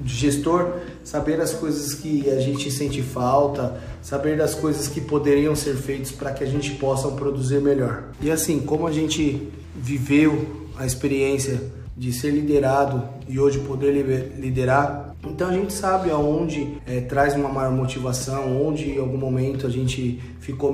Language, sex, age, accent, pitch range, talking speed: Portuguese, male, 20-39, Brazilian, 130-150 Hz, 160 wpm